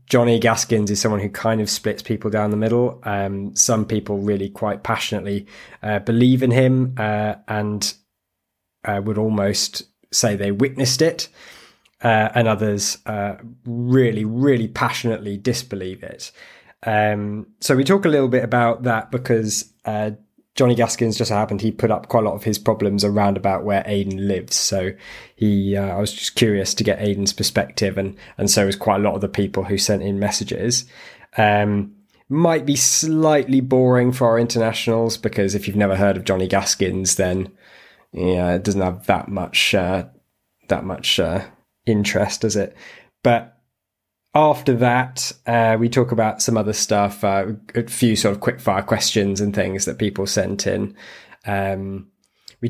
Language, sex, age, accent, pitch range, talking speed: English, male, 20-39, British, 100-120 Hz, 170 wpm